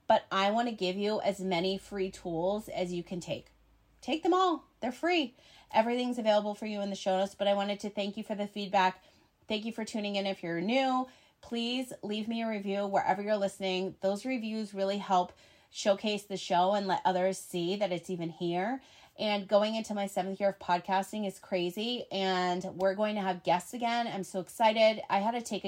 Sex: female